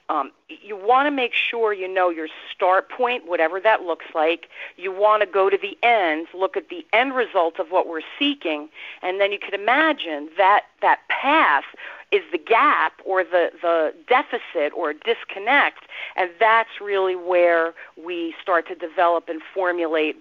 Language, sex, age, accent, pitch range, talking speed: English, female, 40-59, American, 170-205 Hz, 170 wpm